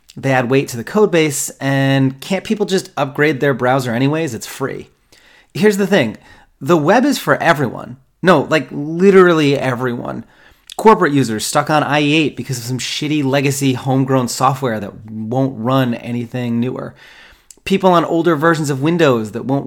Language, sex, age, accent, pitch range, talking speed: English, male, 30-49, American, 130-165 Hz, 165 wpm